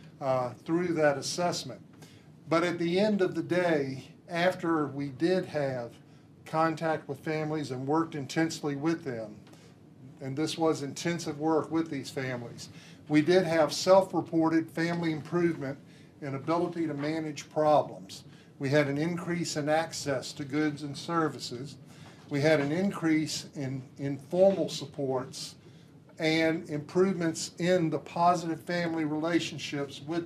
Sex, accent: male, American